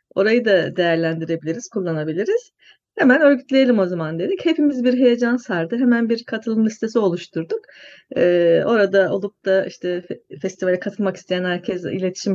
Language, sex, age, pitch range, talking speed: Turkish, female, 30-49, 175-255 Hz, 130 wpm